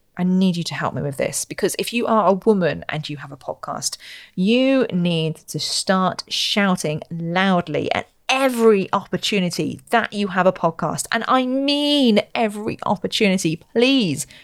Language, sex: English, female